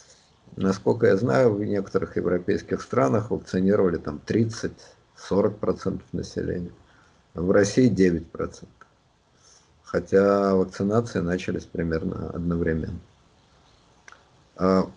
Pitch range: 85-105 Hz